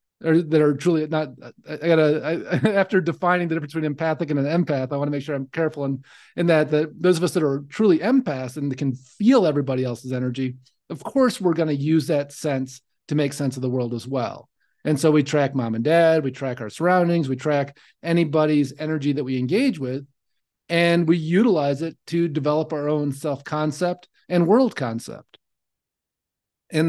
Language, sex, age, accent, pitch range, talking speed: English, male, 40-59, American, 140-175 Hz, 195 wpm